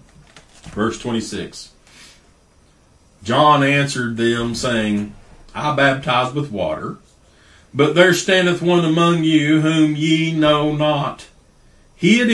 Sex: male